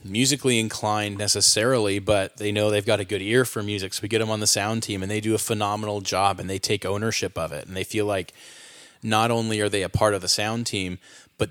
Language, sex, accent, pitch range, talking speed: English, male, American, 100-120 Hz, 250 wpm